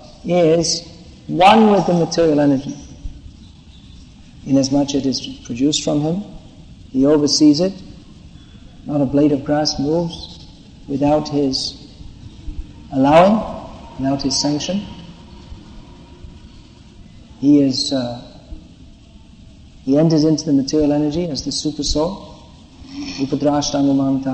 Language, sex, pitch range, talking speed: English, male, 130-160 Hz, 100 wpm